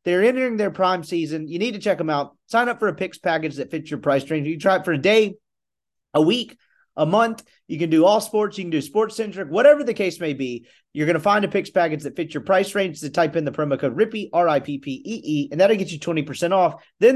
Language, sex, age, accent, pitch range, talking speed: English, male, 30-49, American, 150-205 Hz, 255 wpm